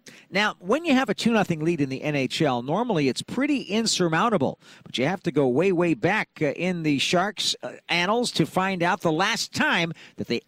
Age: 50-69